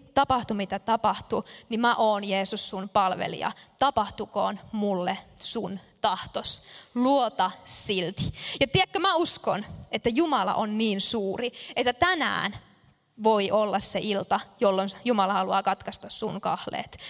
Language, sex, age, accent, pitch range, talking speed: Finnish, female, 20-39, native, 200-250 Hz, 125 wpm